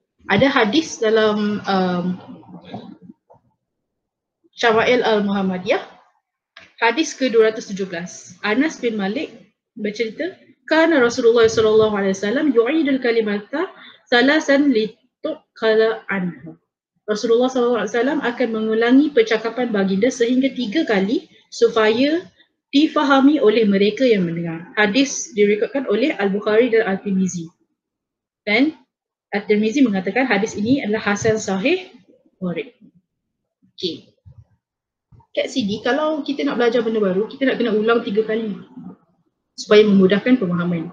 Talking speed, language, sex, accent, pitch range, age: 100 wpm, Indonesian, female, Malaysian, 200-255 Hz, 20-39